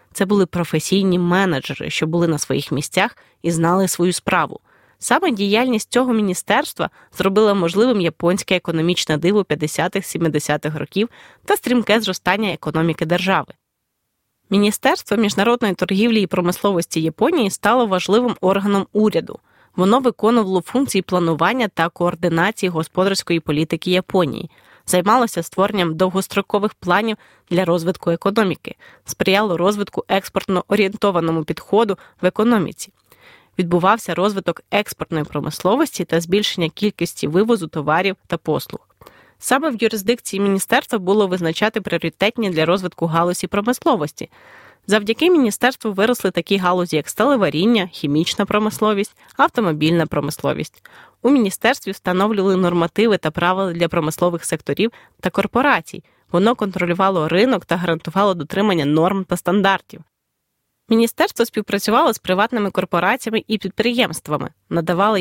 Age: 20-39